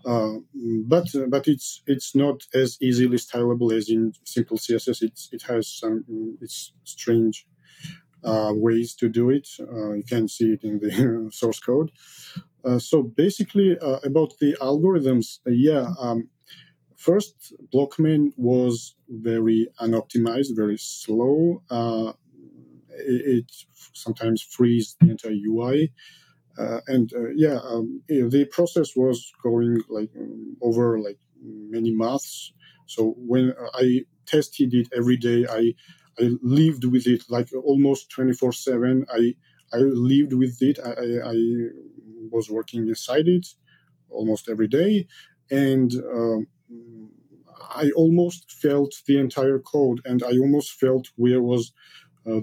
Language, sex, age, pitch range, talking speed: English, male, 40-59, 115-140 Hz, 135 wpm